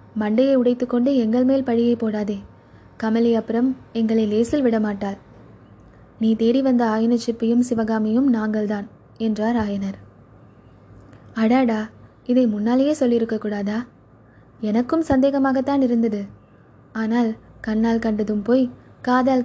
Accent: native